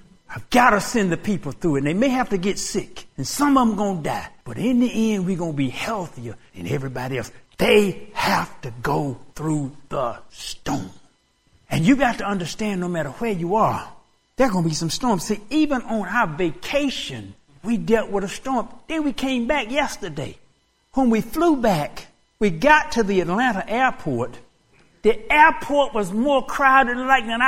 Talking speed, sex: 195 wpm, male